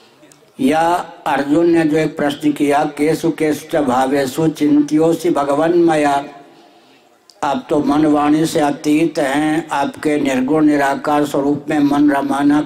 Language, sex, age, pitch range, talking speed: Hindi, male, 60-79, 145-160 Hz, 135 wpm